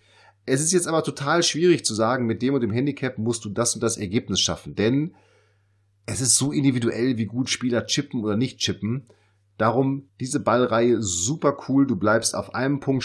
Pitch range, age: 100-130 Hz, 30-49